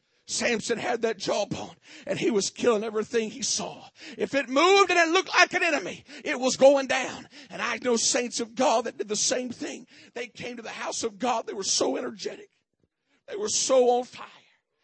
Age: 50-69